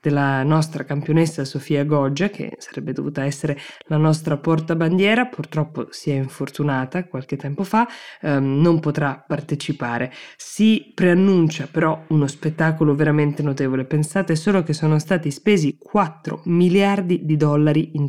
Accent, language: native, Italian